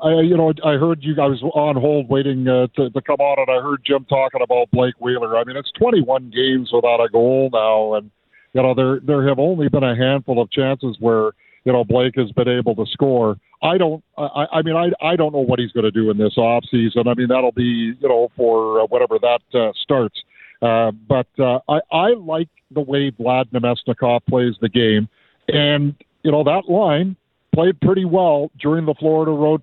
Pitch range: 125-160 Hz